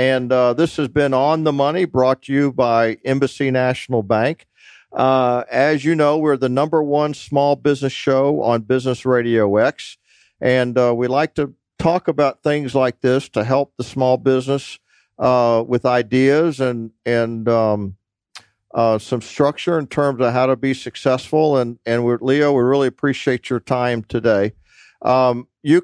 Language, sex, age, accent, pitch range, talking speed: English, male, 50-69, American, 120-145 Hz, 170 wpm